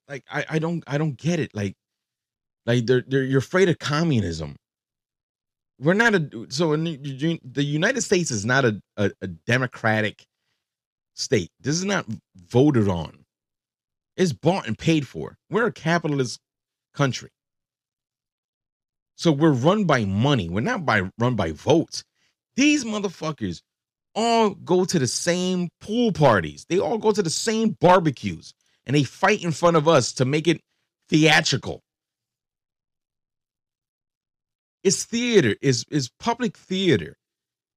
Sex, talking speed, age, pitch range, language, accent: male, 140 wpm, 30-49, 120-170 Hz, English, American